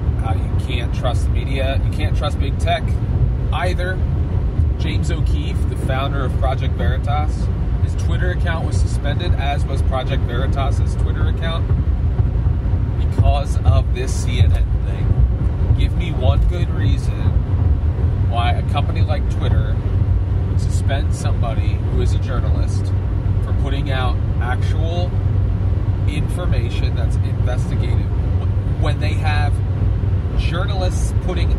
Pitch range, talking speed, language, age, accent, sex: 90-100 Hz, 115 wpm, English, 30-49, American, male